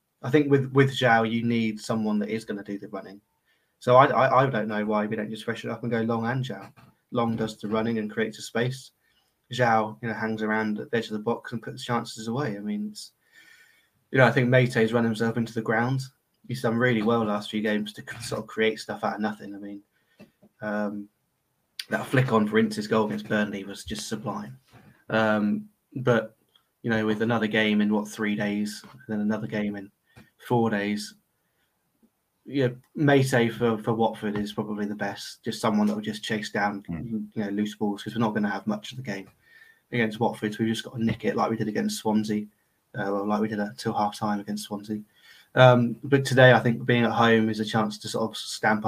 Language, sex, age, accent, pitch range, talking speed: English, male, 20-39, British, 105-120 Hz, 230 wpm